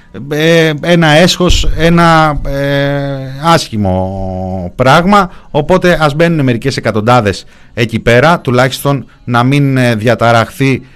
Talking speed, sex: 95 wpm, male